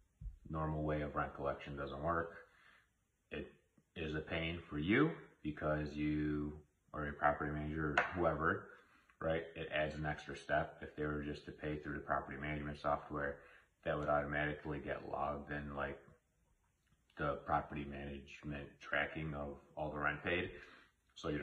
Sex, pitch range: male, 70-75 Hz